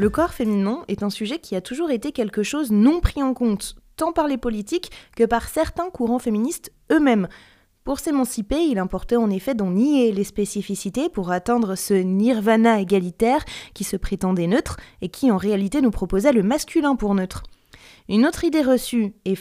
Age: 20-39